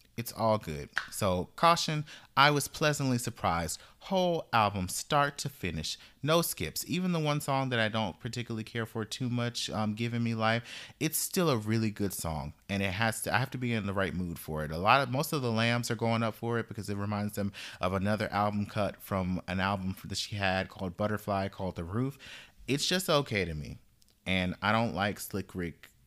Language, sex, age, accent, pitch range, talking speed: English, male, 30-49, American, 95-130 Hz, 215 wpm